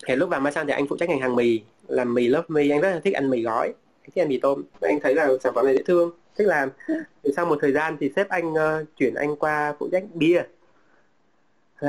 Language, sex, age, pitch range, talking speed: Vietnamese, male, 20-39, 135-170 Hz, 265 wpm